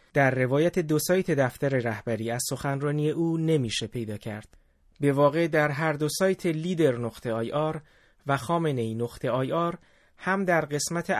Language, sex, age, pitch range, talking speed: Persian, male, 30-49, 115-150 Hz, 160 wpm